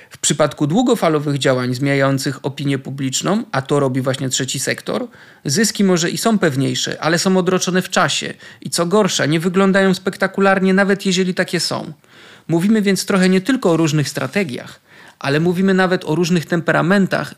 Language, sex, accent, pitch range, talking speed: Polish, male, native, 145-185 Hz, 160 wpm